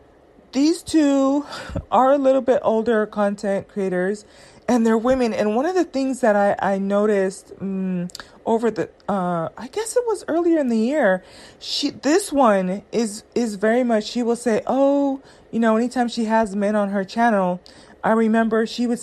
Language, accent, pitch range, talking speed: English, American, 200-270 Hz, 180 wpm